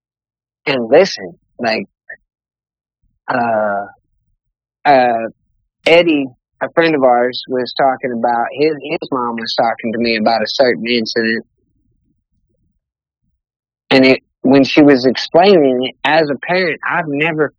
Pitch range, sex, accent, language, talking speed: 120-150 Hz, male, American, English, 120 wpm